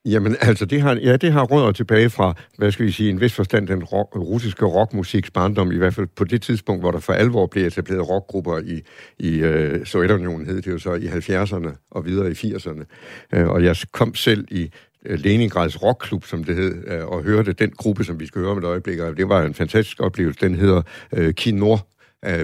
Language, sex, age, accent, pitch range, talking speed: Danish, male, 70-89, native, 85-110 Hz, 215 wpm